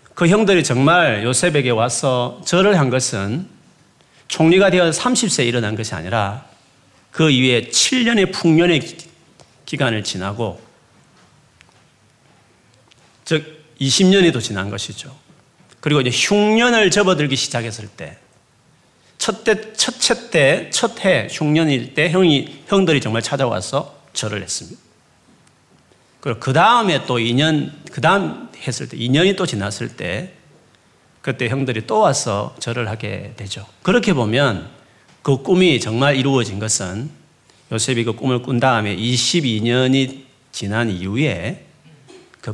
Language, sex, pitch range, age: Korean, male, 120-175 Hz, 40-59